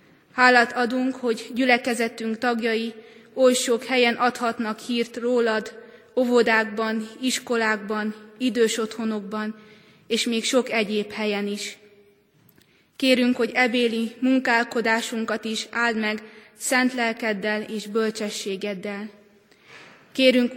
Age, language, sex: 20-39, Hungarian, female